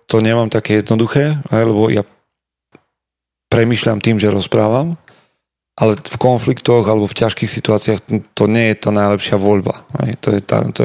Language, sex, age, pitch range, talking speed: Slovak, male, 40-59, 105-115 Hz, 145 wpm